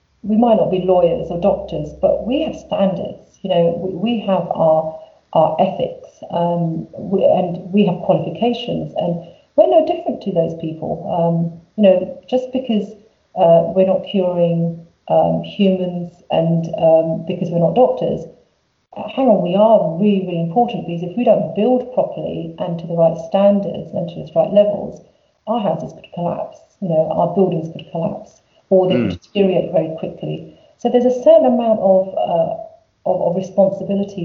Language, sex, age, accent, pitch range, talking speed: English, female, 40-59, British, 170-215 Hz, 170 wpm